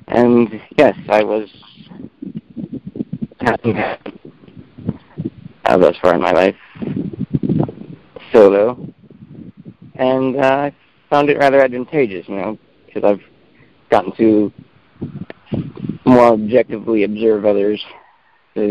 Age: 50-69